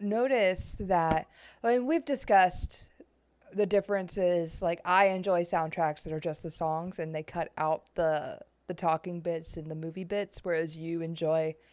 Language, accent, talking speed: English, American, 165 wpm